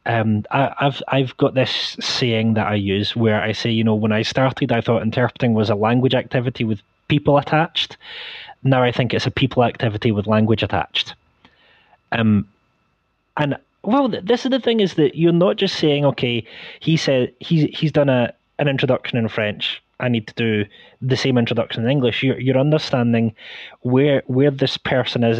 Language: English